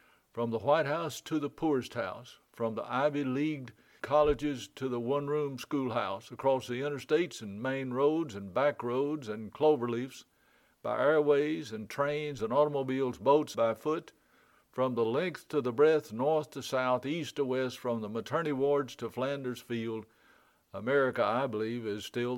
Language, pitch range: English, 120-150 Hz